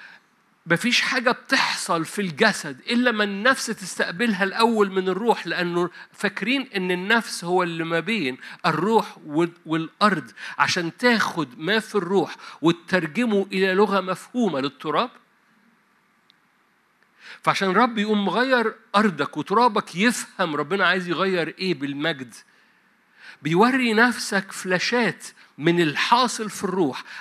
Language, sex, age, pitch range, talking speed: Arabic, male, 50-69, 165-225 Hz, 115 wpm